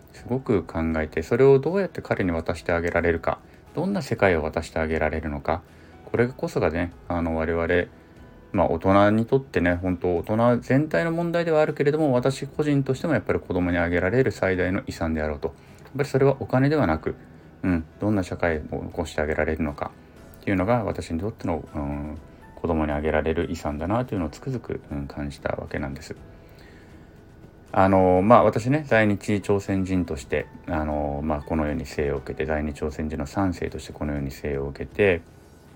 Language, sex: Japanese, male